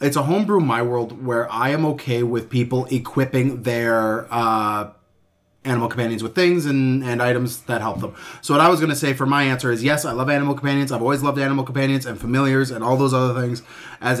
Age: 30-49